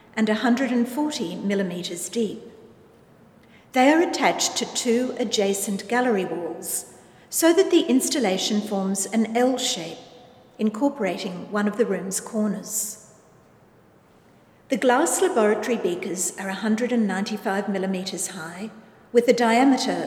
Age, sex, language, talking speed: 50-69, female, English, 110 wpm